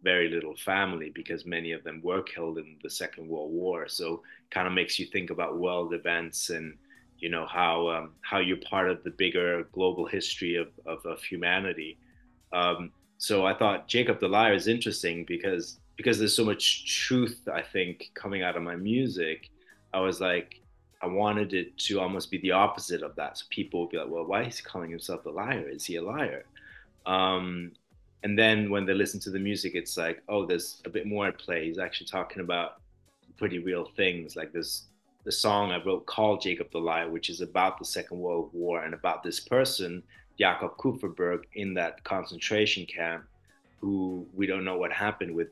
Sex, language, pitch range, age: male, English, 85-100 Hz, 30-49